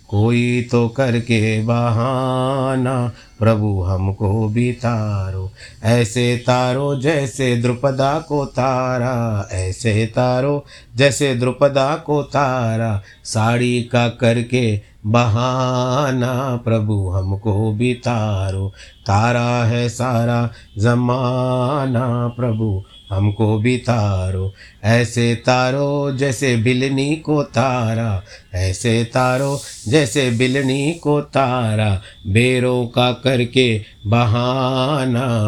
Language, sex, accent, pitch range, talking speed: Hindi, male, native, 110-130 Hz, 90 wpm